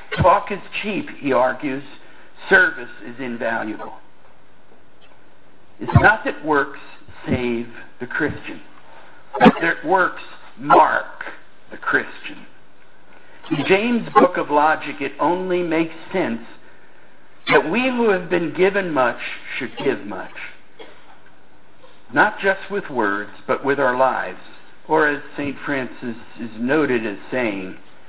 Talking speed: 120 wpm